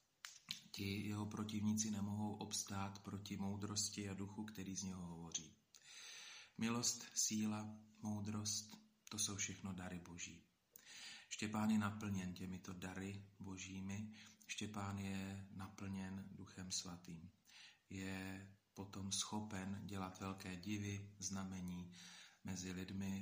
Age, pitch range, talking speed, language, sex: 40-59, 95-105 Hz, 105 wpm, Slovak, male